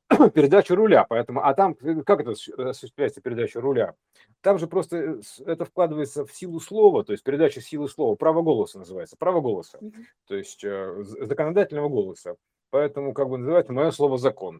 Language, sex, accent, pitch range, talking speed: Russian, male, native, 135-205 Hz, 160 wpm